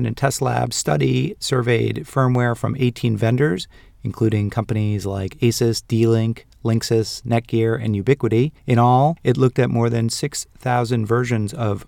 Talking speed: 140 wpm